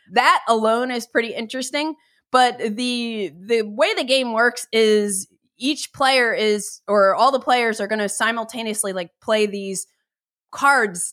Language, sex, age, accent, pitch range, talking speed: English, female, 20-39, American, 200-250 Hz, 150 wpm